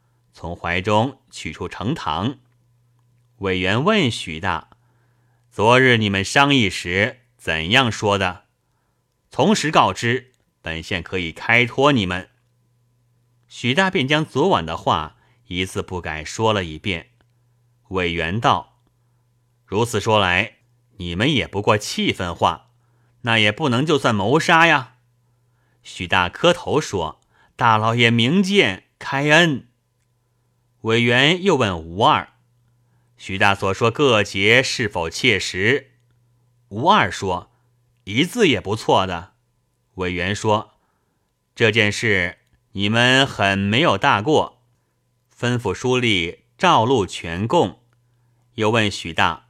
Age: 30-49